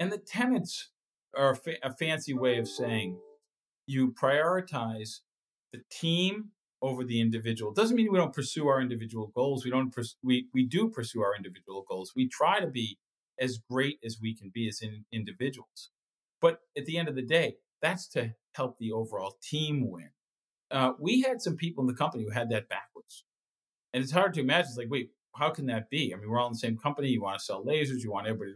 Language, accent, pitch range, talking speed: English, American, 115-150 Hz, 220 wpm